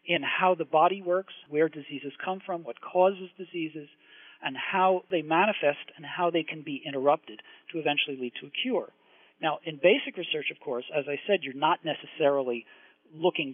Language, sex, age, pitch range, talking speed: English, male, 40-59, 135-180 Hz, 180 wpm